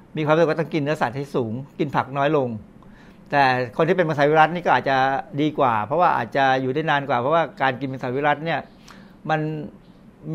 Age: 60-79